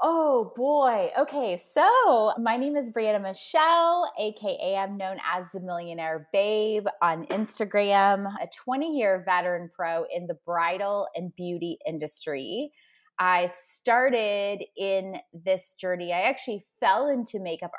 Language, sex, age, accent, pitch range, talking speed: English, female, 20-39, American, 185-255 Hz, 130 wpm